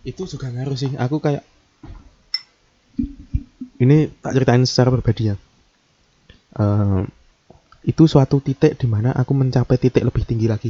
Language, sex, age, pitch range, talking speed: Indonesian, male, 20-39, 110-140 Hz, 130 wpm